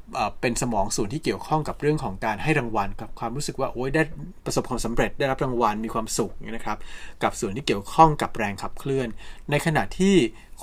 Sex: male